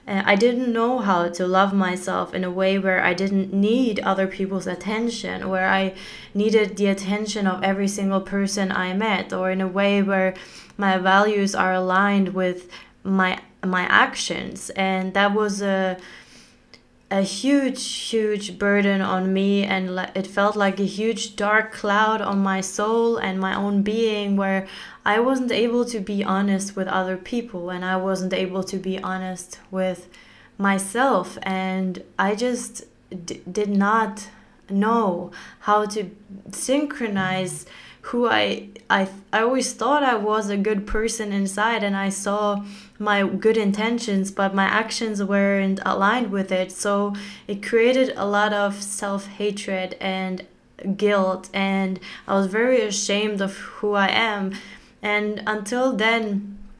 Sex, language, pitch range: female, English, 190-215 Hz